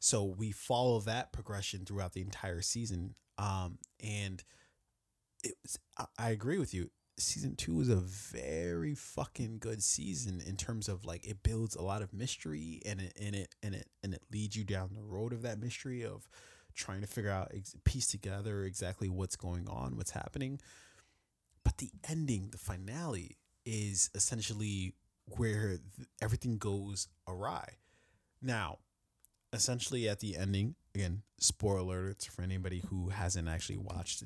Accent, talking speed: American, 160 wpm